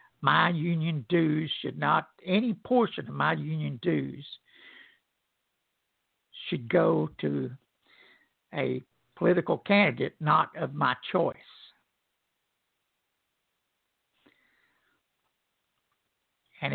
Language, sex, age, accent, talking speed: English, male, 60-79, American, 80 wpm